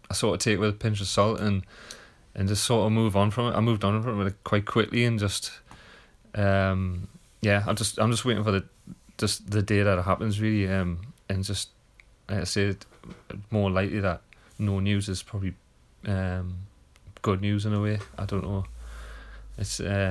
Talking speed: 195 wpm